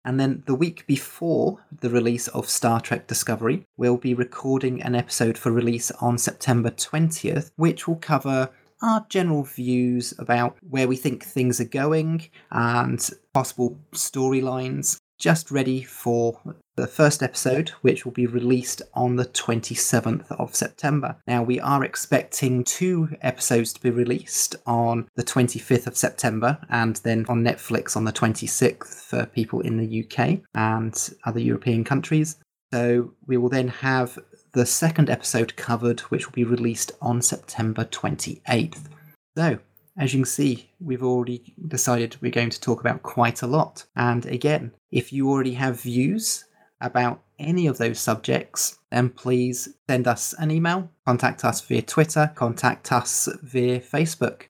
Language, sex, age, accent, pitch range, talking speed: English, male, 30-49, British, 120-145 Hz, 155 wpm